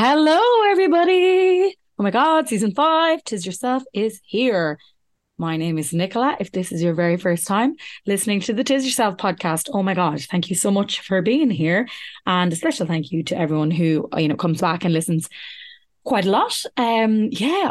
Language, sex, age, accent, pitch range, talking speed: English, female, 20-39, Irish, 165-225 Hz, 195 wpm